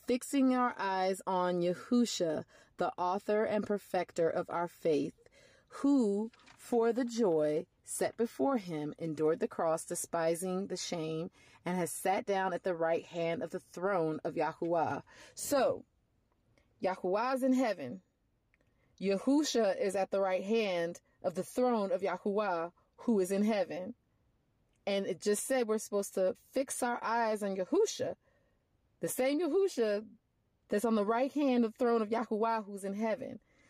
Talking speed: 155 wpm